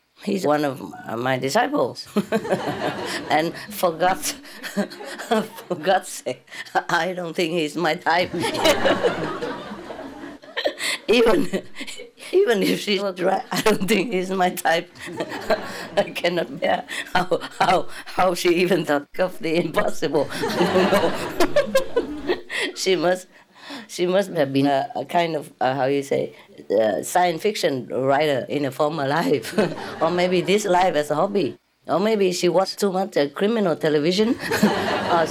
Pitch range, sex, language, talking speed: 170-210 Hz, female, English, 135 wpm